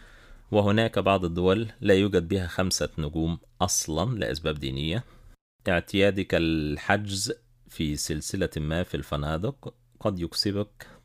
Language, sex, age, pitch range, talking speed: Arabic, male, 40-59, 80-115 Hz, 110 wpm